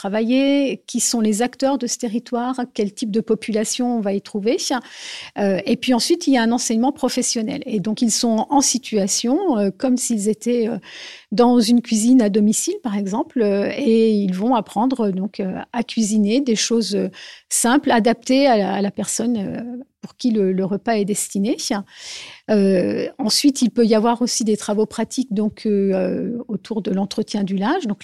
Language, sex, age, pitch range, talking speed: French, female, 50-69, 200-240 Hz, 180 wpm